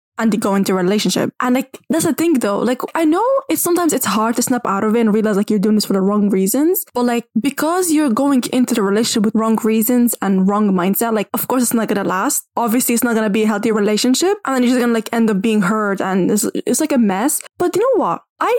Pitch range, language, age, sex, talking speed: 215-275 Hz, English, 10-29, female, 280 wpm